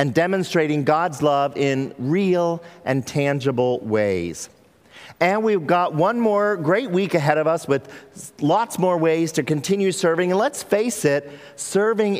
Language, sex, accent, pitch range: English, male, American, 130-175 Hz